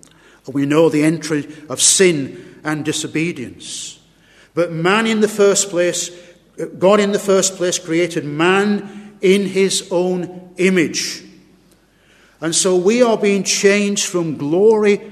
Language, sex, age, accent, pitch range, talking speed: English, male, 50-69, British, 150-185 Hz, 130 wpm